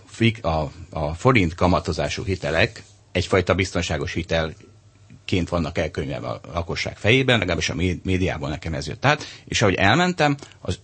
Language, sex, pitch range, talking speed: Hungarian, male, 90-115 Hz, 135 wpm